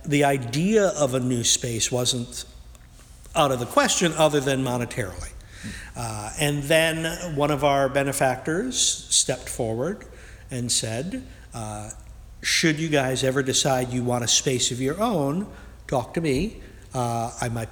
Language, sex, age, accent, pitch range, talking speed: English, male, 50-69, American, 125-155 Hz, 150 wpm